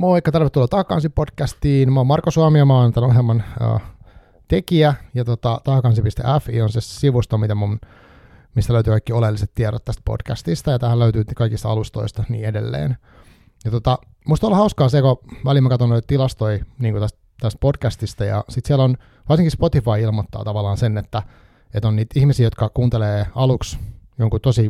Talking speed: 165 wpm